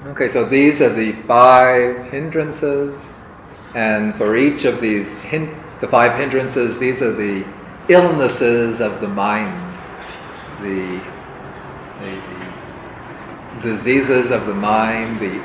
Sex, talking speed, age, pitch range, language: male, 115 wpm, 50-69, 105-130 Hz, English